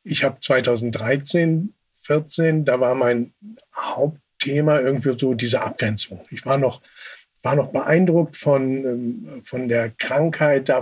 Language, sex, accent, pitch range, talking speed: German, male, German, 125-150 Hz, 120 wpm